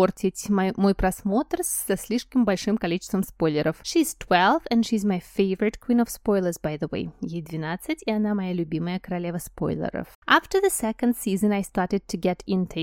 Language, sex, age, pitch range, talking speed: Russian, female, 20-39, 185-240 Hz, 175 wpm